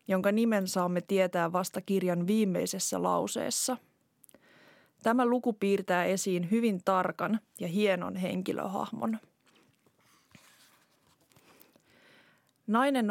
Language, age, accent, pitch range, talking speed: Finnish, 20-39, native, 185-220 Hz, 80 wpm